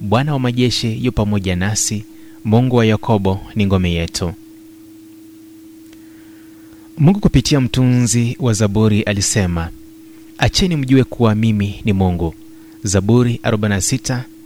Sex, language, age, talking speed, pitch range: male, Swahili, 30-49, 110 wpm, 100-145 Hz